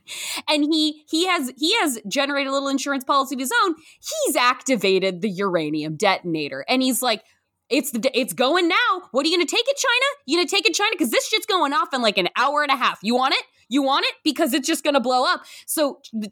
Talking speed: 250 wpm